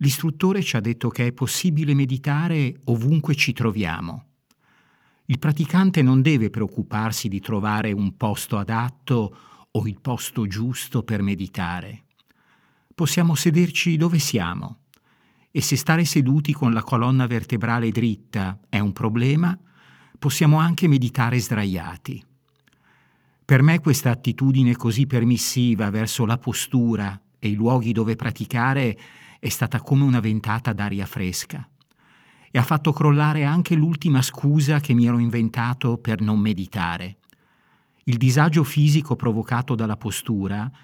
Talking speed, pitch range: 130 wpm, 110-140 Hz